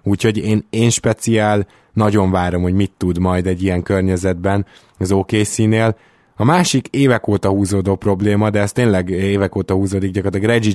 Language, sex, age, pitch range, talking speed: Hungarian, male, 20-39, 95-110 Hz, 175 wpm